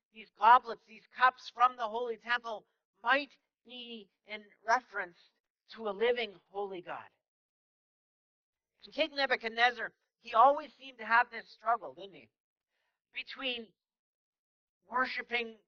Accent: American